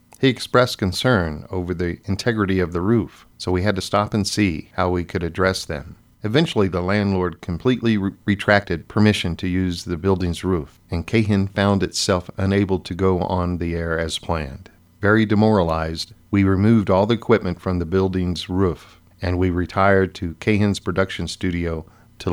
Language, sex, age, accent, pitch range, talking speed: English, male, 50-69, American, 90-110 Hz, 170 wpm